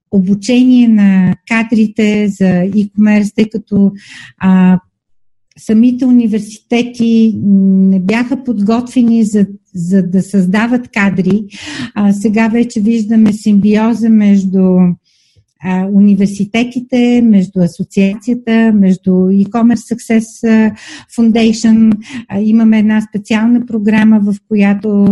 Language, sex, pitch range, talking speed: Bulgarian, female, 190-220 Hz, 85 wpm